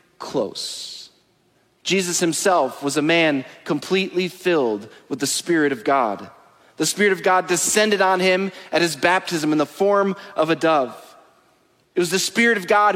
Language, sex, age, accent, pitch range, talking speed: English, male, 30-49, American, 170-215 Hz, 160 wpm